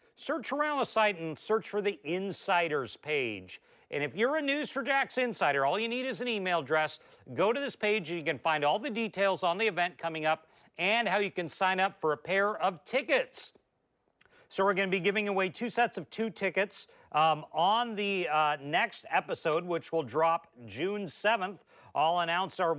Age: 40-59